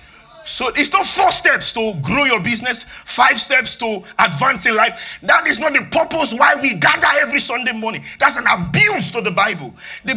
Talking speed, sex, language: 195 wpm, male, English